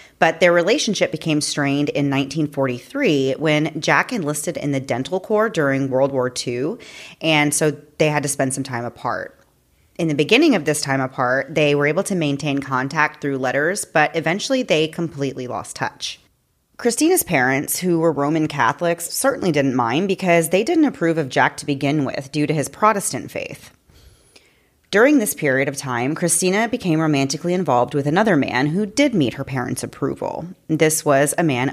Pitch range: 135-170 Hz